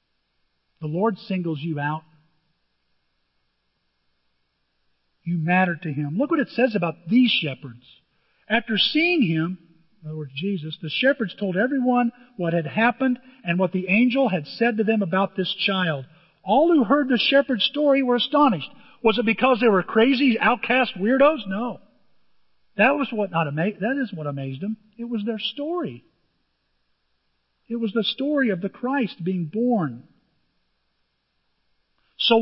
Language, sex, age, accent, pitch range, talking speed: English, male, 50-69, American, 155-235 Hz, 150 wpm